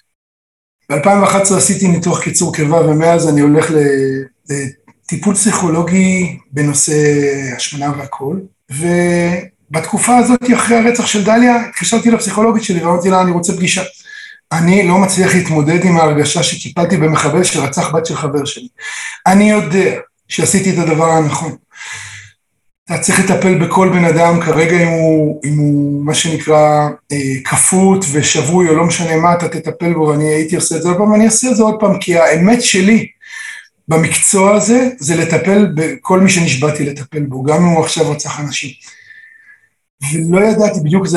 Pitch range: 155-210 Hz